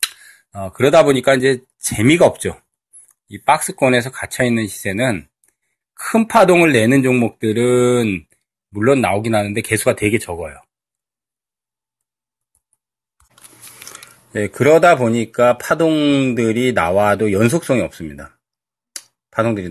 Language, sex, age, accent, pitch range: Korean, male, 30-49, native, 100-130 Hz